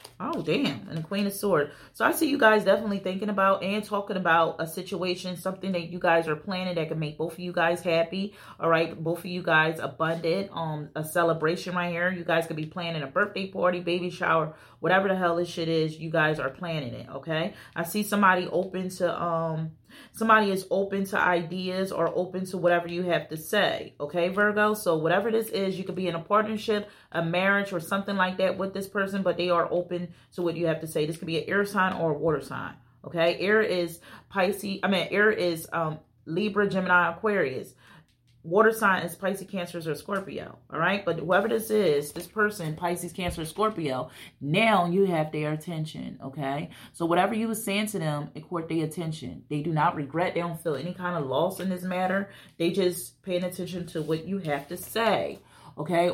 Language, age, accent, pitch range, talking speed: English, 30-49, American, 160-190 Hz, 215 wpm